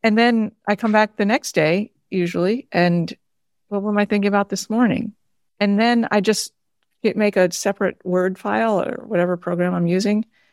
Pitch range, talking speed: 180-215 Hz, 175 wpm